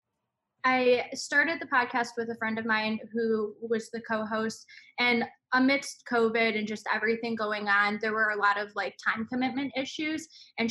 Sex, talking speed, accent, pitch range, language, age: female, 175 wpm, American, 225-260 Hz, English, 10-29